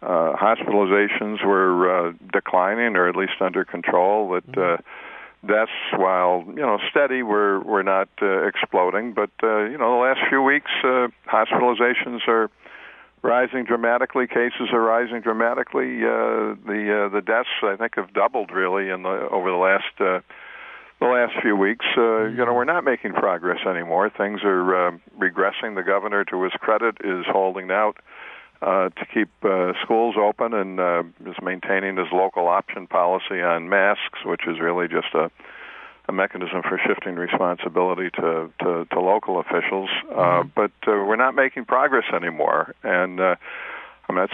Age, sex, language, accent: 60-79, male, English, American